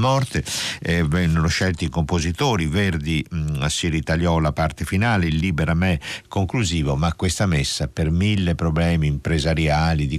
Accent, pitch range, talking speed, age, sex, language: native, 80-110 Hz, 145 wpm, 50-69, male, Italian